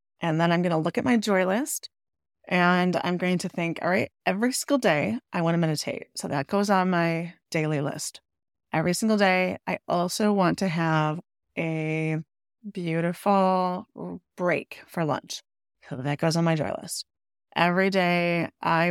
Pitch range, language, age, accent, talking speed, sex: 160-200 Hz, English, 30-49, American, 170 wpm, female